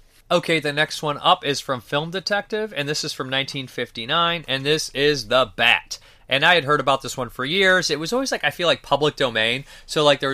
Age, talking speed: 30-49, 225 wpm